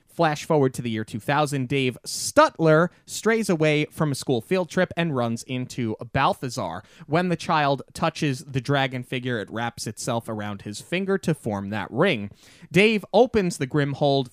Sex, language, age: male, English, 30-49